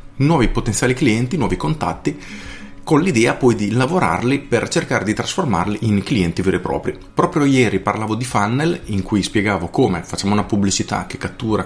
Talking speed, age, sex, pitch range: 170 wpm, 30-49, male, 95-125 Hz